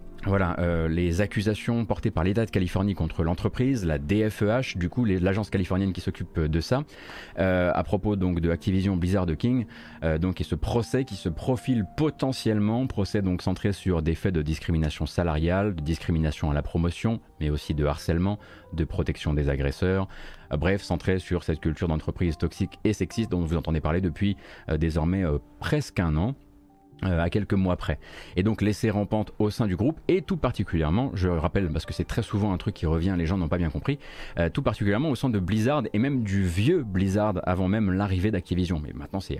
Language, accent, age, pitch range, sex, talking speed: French, French, 30-49, 85-105 Hz, male, 205 wpm